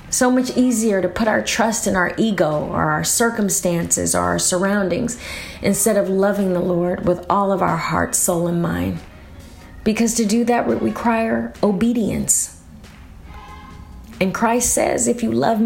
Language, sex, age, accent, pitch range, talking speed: English, female, 30-49, American, 160-200 Hz, 160 wpm